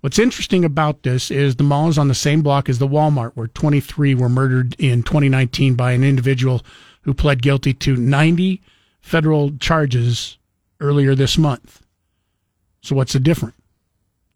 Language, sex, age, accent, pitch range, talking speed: English, male, 50-69, American, 120-150 Hz, 160 wpm